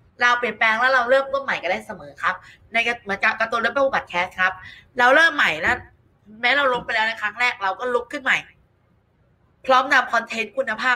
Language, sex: Thai, female